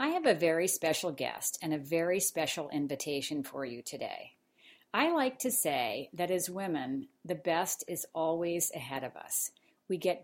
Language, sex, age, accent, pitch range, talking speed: English, female, 50-69, American, 155-190 Hz, 175 wpm